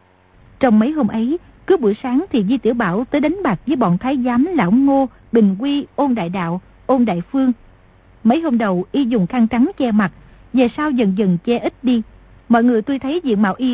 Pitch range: 210-275 Hz